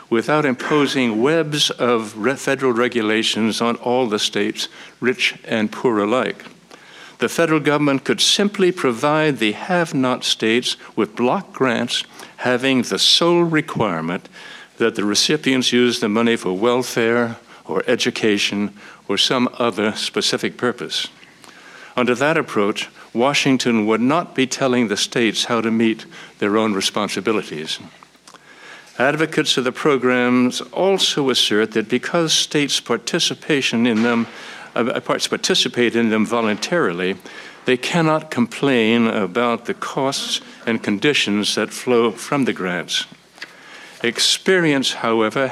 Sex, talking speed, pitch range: male, 125 wpm, 115-140 Hz